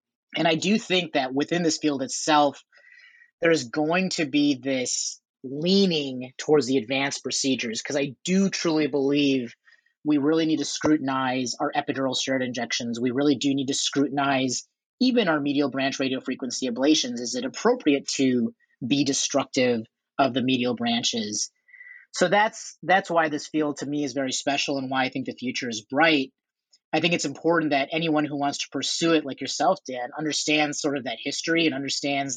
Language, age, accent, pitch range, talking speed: English, 30-49, American, 135-165 Hz, 180 wpm